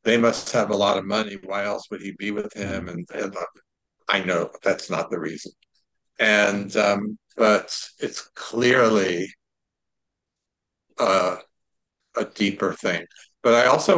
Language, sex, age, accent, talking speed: English, male, 50-69, American, 140 wpm